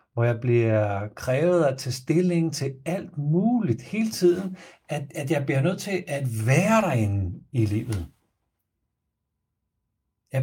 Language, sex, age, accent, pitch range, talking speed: Danish, male, 60-79, native, 105-160 Hz, 140 wpm